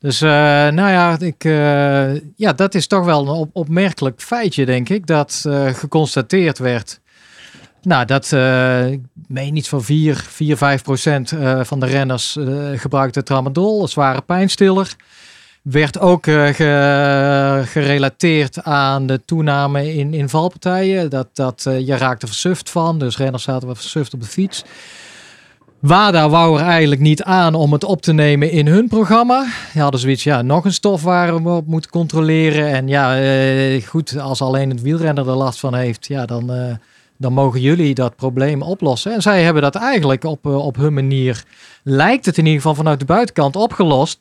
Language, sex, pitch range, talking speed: Dutch, male, 135-165 Hz, 175 wpm